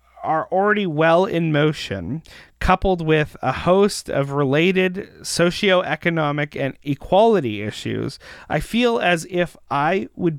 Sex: male